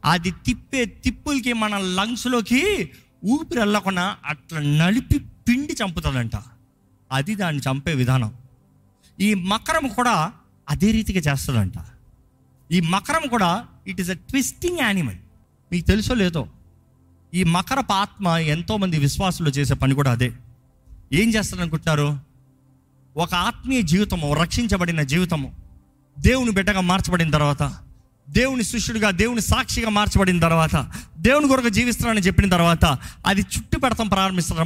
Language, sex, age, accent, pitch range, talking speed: Telugu, male, 30-49, native, 130-200 Hz, 115 wpm